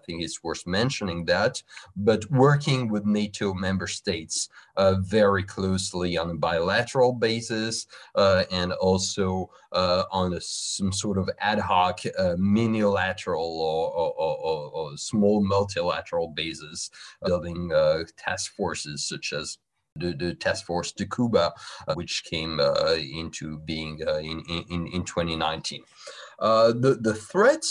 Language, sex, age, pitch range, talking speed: English, male, 30-49, 90-115 Hz, 145 wpm